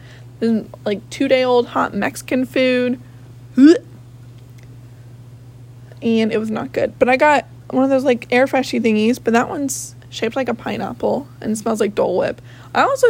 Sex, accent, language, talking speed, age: female, American, English, 165 wpm, 20-39